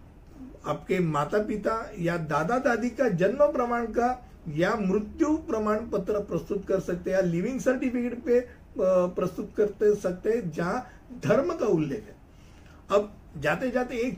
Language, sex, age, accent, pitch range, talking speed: Hindi, male, 60-79, native, 180-240 Hz, 140 wpm